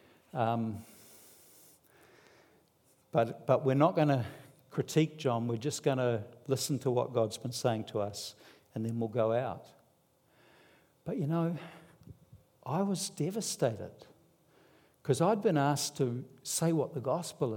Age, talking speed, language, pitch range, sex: 60-79, 140 wpm, English, 130-180 Hz, male